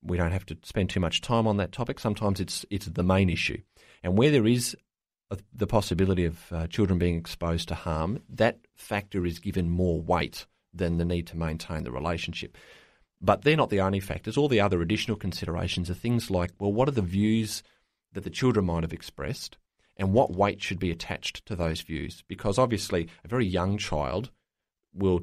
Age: 30-49